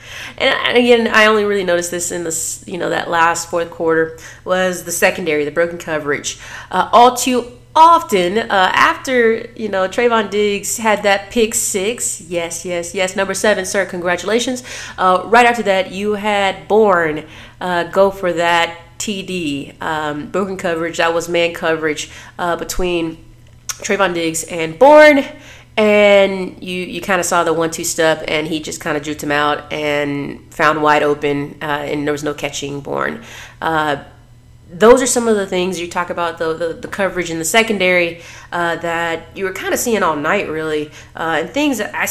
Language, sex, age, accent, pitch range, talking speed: English, female, 30-49, American, 160-205 Hz, 180 wpm